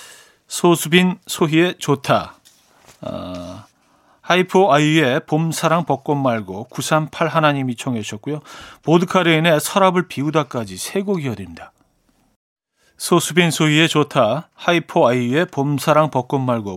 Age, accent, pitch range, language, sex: 40-59, native, 130-170 Hz, Korean, male